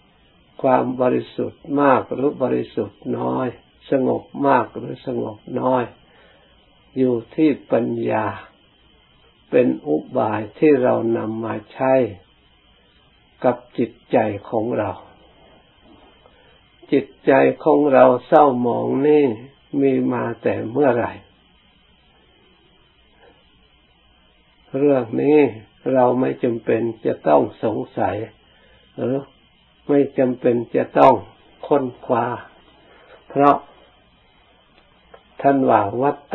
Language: Thai